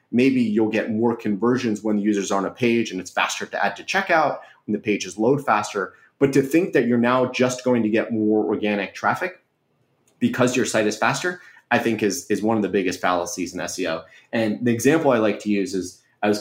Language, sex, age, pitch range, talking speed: English, male, 30-49, 100-125 Hz, 230 wpm